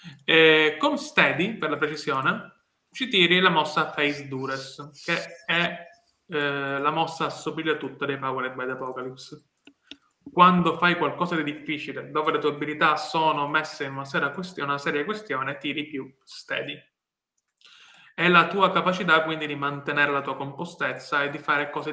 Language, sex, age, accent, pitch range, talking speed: Italian, male, 20-39, native, 140-170 Hz, 160 wpm